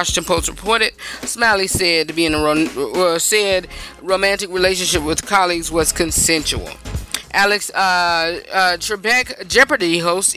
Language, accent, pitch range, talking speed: English, American, 175-235 Hz, 120 wpm